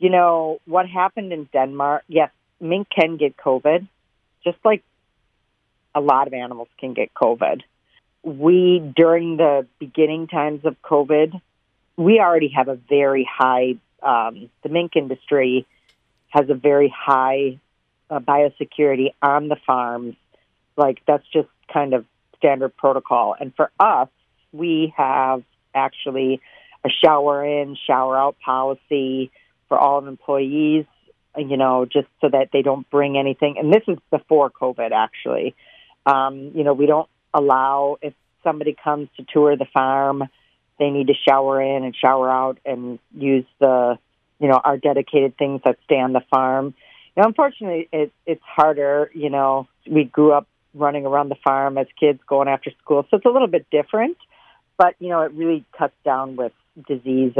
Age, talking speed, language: 40-59, 160 wpm, English